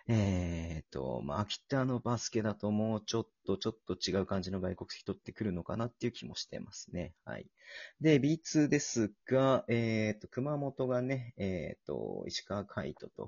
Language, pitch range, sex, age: Japanese, 95-140 Hz, male, 40-59